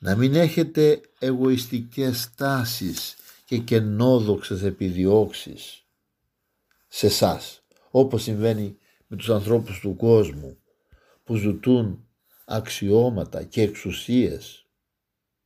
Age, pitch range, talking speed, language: 60-79, 100-130 Hz, 85 wpm, Greek